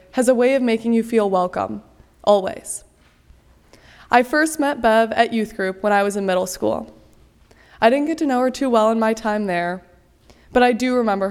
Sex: female